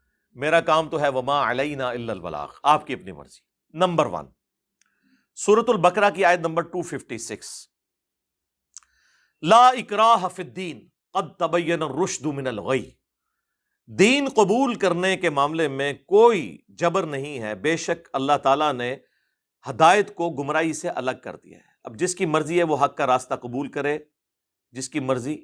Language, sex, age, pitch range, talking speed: Urdu, male, 50-69, 130-180 Hz, 150 wpm